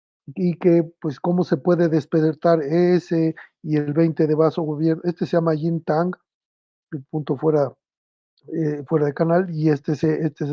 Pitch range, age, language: 155-175 Hz, 40-59, Spanish